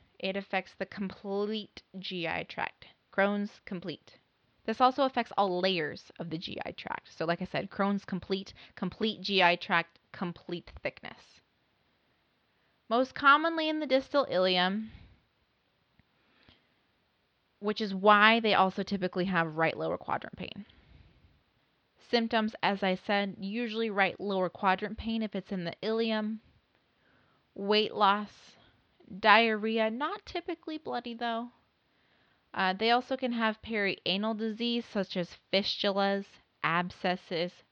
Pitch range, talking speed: 170-220 Hz, 120 wpm